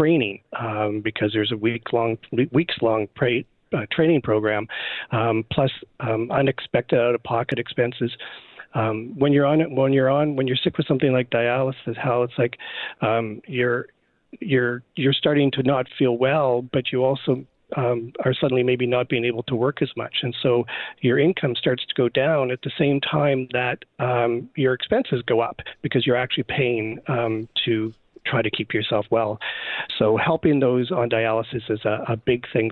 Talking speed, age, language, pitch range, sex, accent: 185 wpm, 40-59, English, 110-130 Hz, male, American